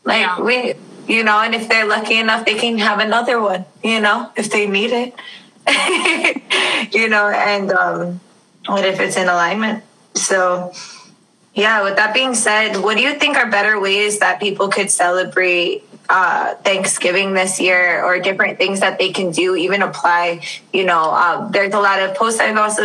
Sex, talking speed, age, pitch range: female, 180 wpm, 20-39, 185-215 Hz